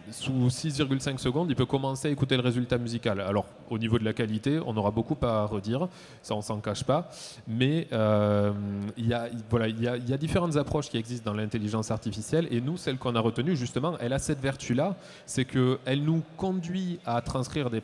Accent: French